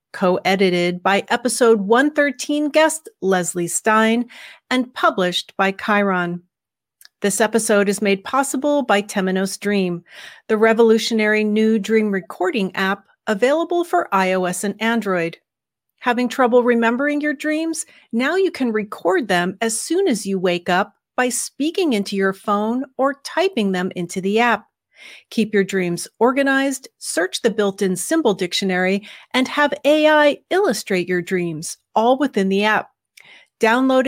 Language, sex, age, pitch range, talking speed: English, female, 40-59, 195-270 Hz, 135 wpm